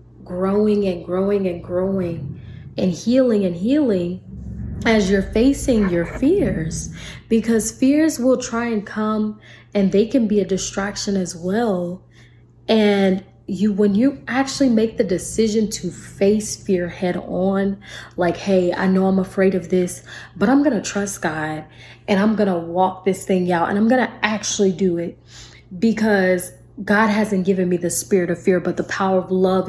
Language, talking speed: English, 165 wpm